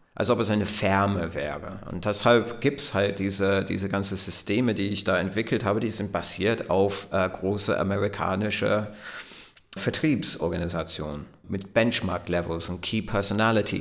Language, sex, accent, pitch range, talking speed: German, male, German, 95-115 Hz, 145 wpm